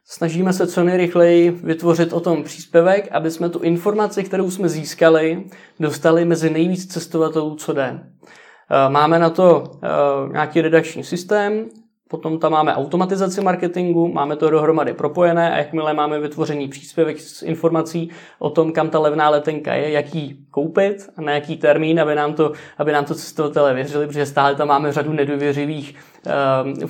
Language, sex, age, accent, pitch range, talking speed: Czech, male, 20-39, native, 150-165 Hz, 155 wpm